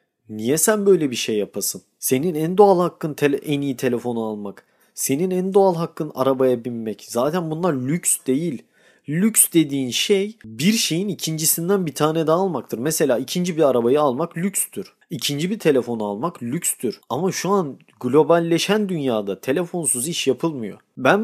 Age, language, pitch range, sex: 40-59, Turkish, 125-175 Hz, male